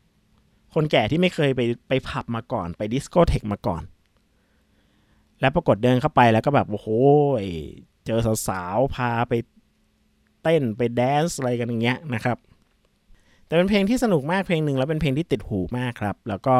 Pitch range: 105-140 Hz